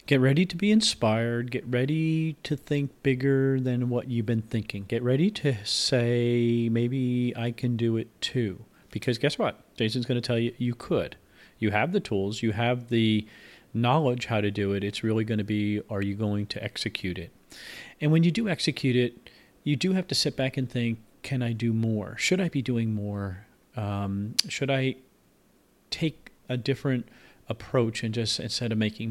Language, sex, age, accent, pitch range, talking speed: English, male, 40-59, American, 105-125 Hz, 190 wpm